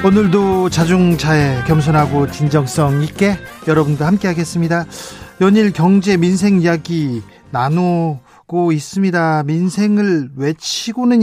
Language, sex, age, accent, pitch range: Korean, male, 40-59, native, 150-185 Hz